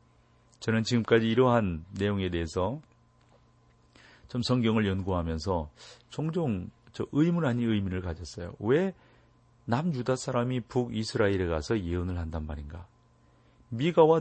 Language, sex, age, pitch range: Korean, male, 40-59, 95-125 Hz